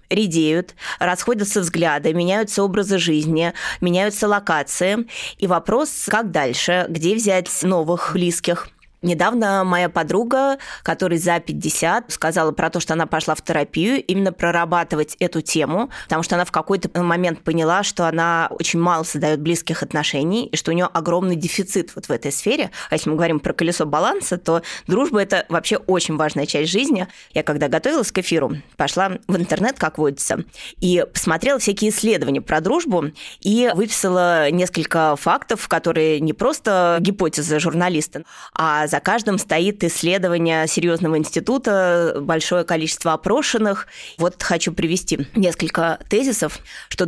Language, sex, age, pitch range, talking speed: Russian, female, 20-39, 165-205 Hz, 145 wpm